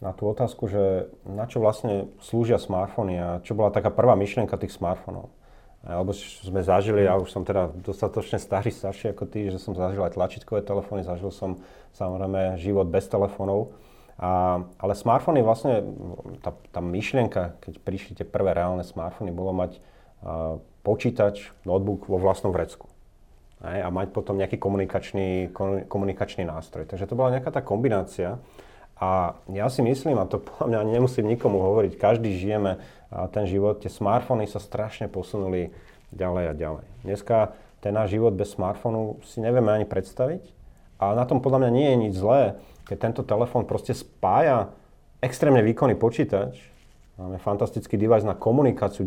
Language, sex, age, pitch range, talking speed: Slovak, male, 30-49, 95-115 Hz, 160 wpm